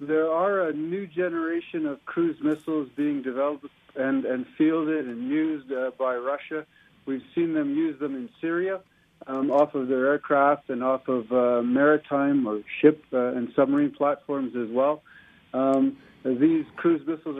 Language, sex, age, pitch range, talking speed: English, male, 50-69, 130-155 Hz, 160 wpm